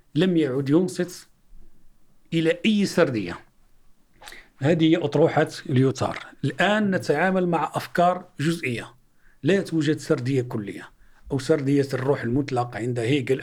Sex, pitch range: male, 135-175 Hz